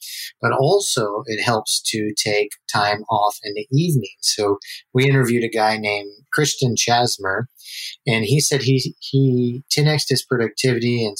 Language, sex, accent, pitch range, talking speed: English, male, American, 105-130 Hz, 150 wpm